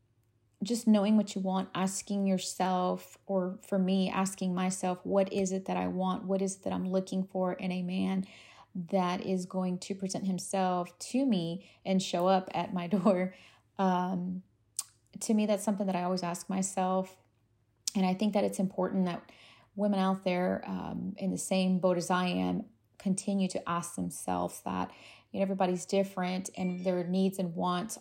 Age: 30-49